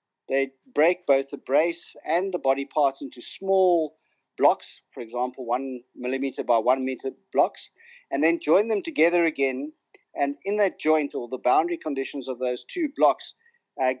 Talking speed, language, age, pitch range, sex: 165 wpm, English, 50-69, 135-180 Hz, male